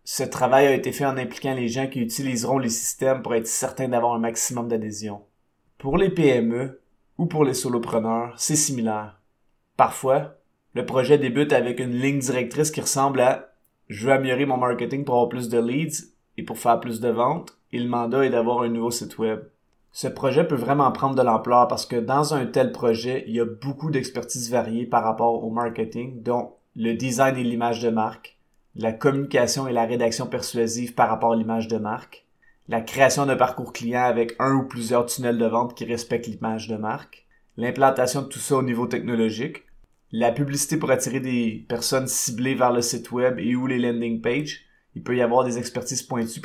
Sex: male